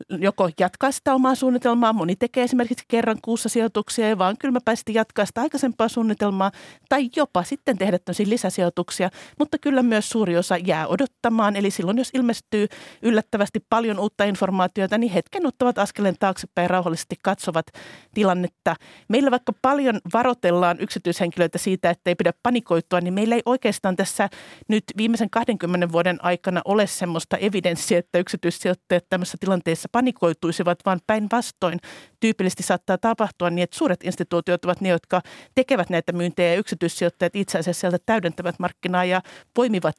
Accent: native